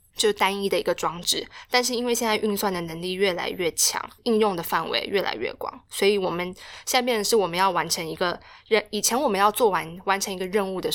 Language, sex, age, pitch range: Chinese, female, 20-39, 175-235 Hz